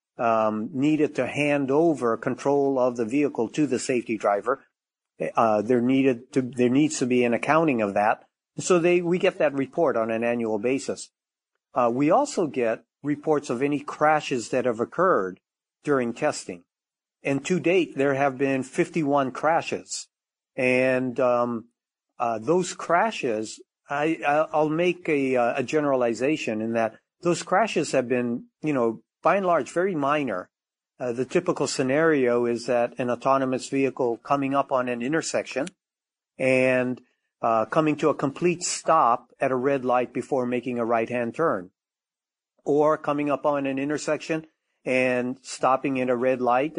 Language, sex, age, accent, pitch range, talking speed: English, male, 50-69, American, 125-150 Hz, 155 wpm